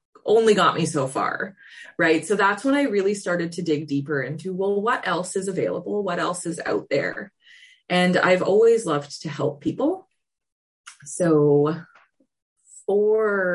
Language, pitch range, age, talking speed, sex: English, 150-205 Hz, 20-39, 155 wpm, female